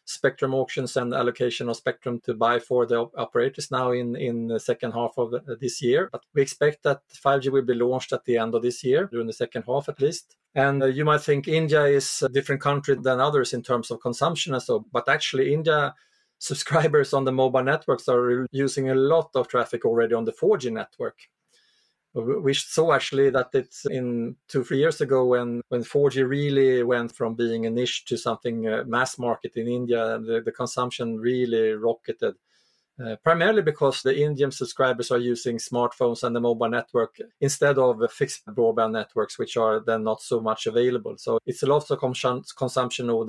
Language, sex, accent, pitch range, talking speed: English, male, Norwegian, 120-140 Hz, 195 wpm